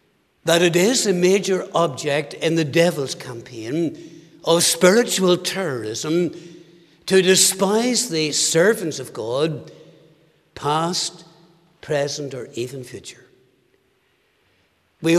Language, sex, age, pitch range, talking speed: English, male, 60-79, 160-185 Hz, 100 wpm